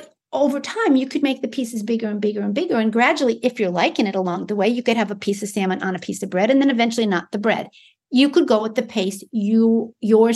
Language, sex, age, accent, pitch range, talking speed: English, female, 50-69, American, 210-285 Hz, 270 wpm